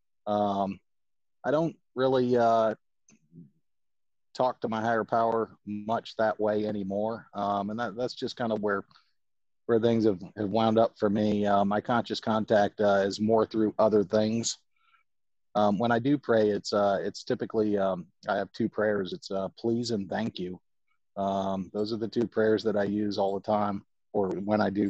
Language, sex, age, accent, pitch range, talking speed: English, male, 40-59, American, 100-115 Hz, 180 wpm